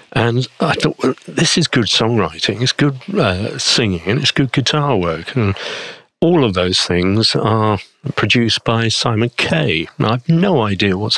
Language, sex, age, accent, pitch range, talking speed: English, male, 50-69, British, 95-130 Hz, 170 wpm